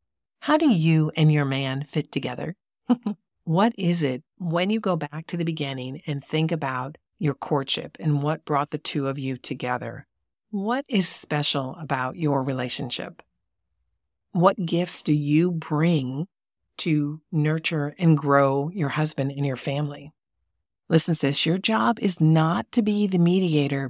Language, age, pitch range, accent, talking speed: English, 40-59, 140-165 Hz, American, 155 wpm